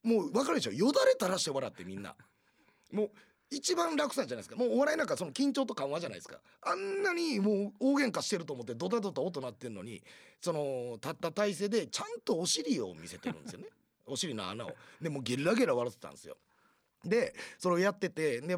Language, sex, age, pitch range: Japanese, male, 30-49, 160-260 Hz